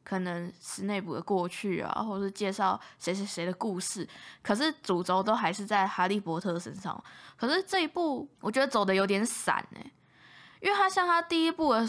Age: 10-29